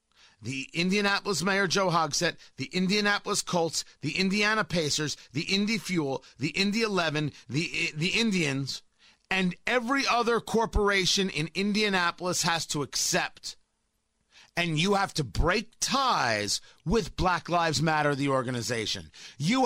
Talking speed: 130 wpm